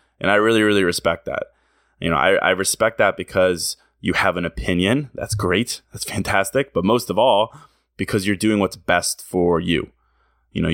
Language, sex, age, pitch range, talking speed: English, male, 20-39, 90-110 Hz, 190 wpm